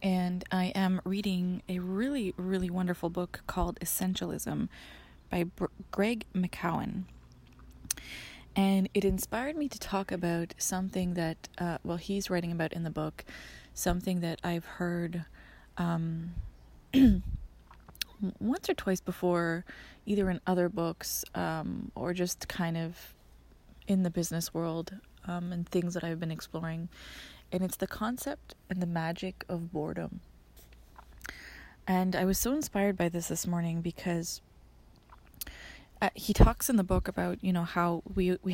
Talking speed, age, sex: 140 wpm, 20-39, female